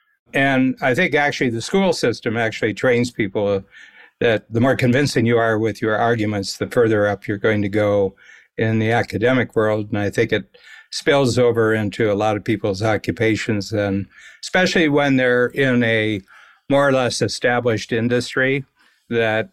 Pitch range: 105-125 Hz